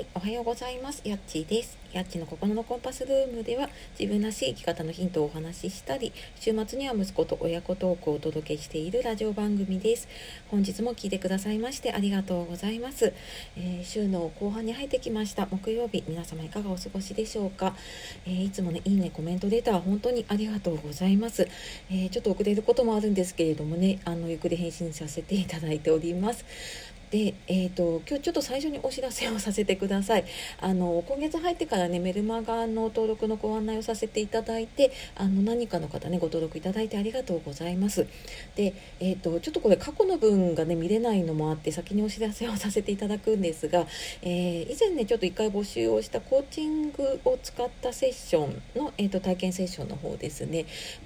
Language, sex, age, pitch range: Japanese, female, 40-59, 175-230 Hz